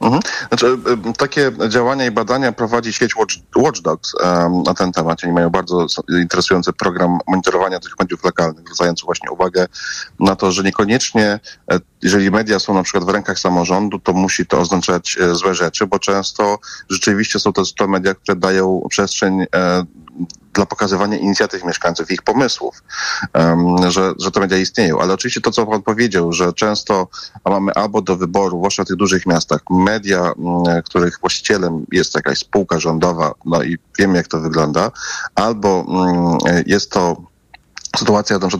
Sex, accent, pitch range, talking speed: male, native, 85-100 Hz, 155 wpm